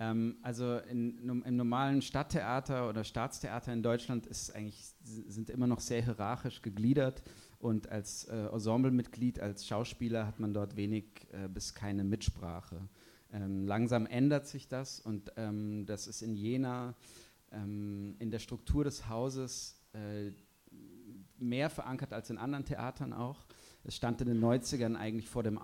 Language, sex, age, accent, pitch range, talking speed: Dutch, male, 30-49, German, 105-120 Hz, 150 wpm